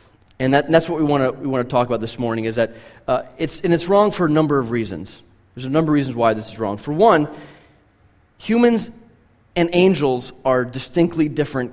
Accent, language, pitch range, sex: American, English, 120-155 Hz, male